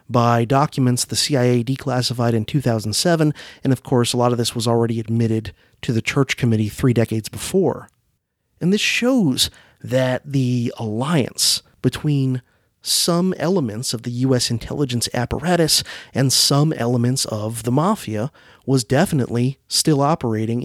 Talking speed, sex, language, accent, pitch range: 140 wpm, male, English, American, 115-145 Hz